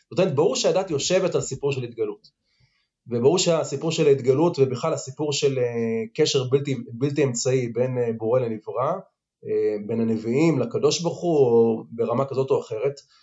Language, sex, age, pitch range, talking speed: Hebrew, male, 30-49, 125-155 Hz, 135 wpm